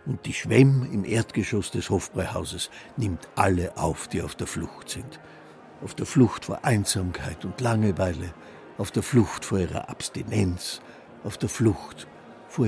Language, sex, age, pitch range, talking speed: German, male, 60-79, 90-120 Hz, 150 wpm